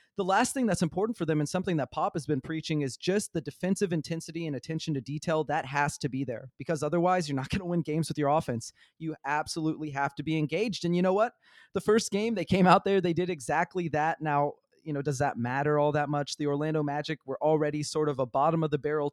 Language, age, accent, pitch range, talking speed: English, 30-49, American, 145-180 Hz, 255 wpm